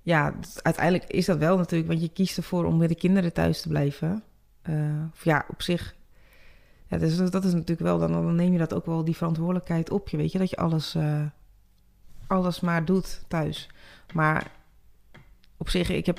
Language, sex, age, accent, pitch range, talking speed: Dutch, female, 20-39, Dutch, 160-180 Hz, 195 wpm